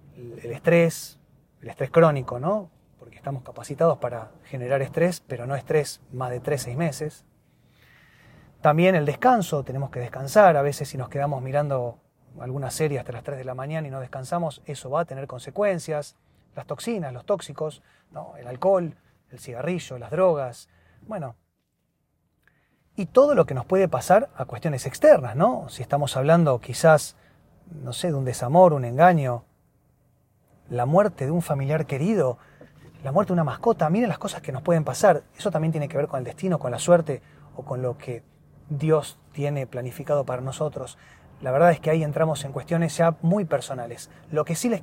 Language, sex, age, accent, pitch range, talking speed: Spanish, male, 30-49, Argentinian, 130-165 Hz, 180 wpm